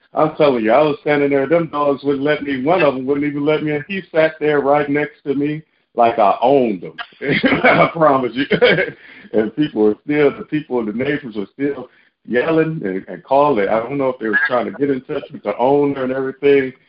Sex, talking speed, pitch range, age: male, 230 wpm, 130-175 Hz, 50-69